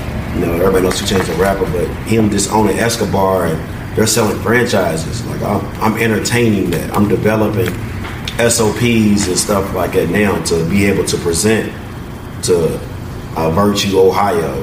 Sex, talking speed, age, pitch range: male, 160 wpm, 30-49, 80-105 Hz